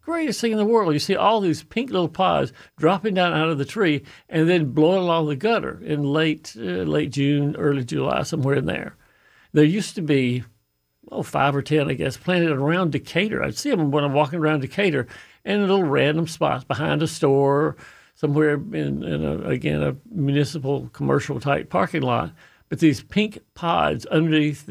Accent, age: American, 60-79